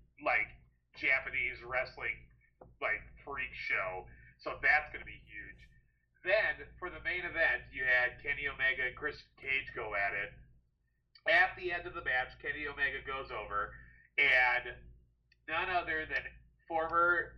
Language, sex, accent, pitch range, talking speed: English, male, American, 125-185 Hz, 145 wpm